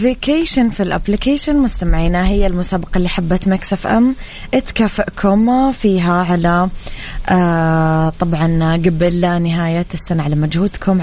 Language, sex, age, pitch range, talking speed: English, female, 20-39, 170-190 Hz, 100 wpm